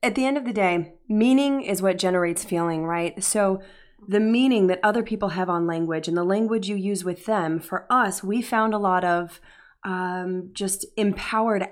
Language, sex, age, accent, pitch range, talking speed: English, female, 20-39, American, 185-220 Hz, 195 wpm